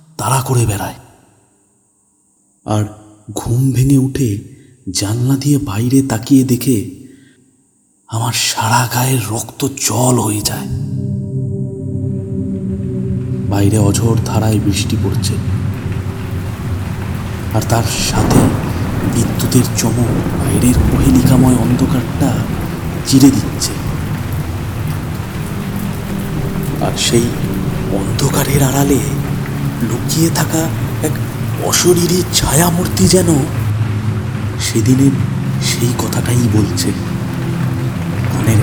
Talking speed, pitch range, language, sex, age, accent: 60 wpm, 105-135 Hz, Bengali, male, 30-49, native